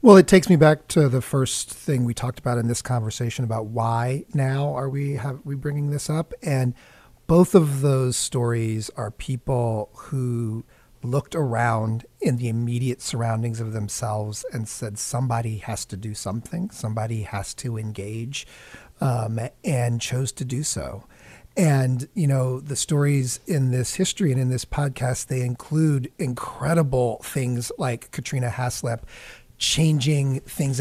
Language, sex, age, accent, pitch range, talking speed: English, male, 40-59, American, 120-145 Hz, 155 wpm